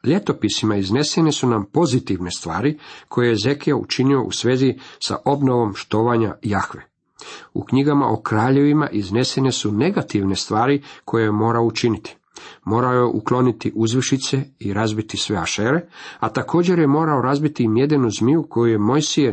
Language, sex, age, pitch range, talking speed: Croatian, male, 50-69, 110-140 Hz, 145 wpm